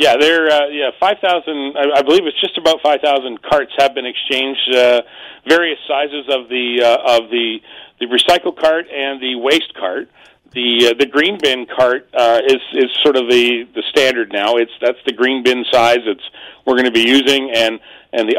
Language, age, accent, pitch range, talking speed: English, 40-59, American, 125-155 Hz, 205 wpm